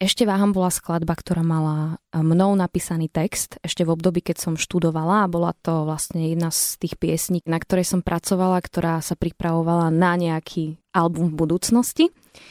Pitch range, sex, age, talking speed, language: 170-185 Hz, female, 20-39, 170 wpm, Slovak